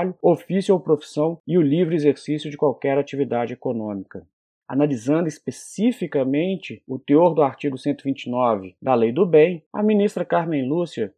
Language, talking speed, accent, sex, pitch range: Portuguese, 140 wpm, Brazilian, male, 140-170 Hz